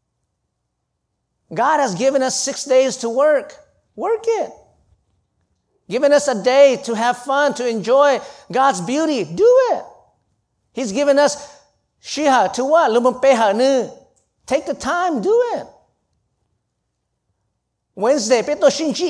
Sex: male